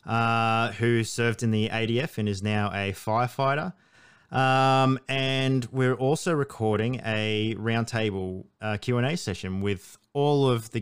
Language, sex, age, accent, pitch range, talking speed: English, male, 20-39, Australian, 100-125 Hz, 150 wpm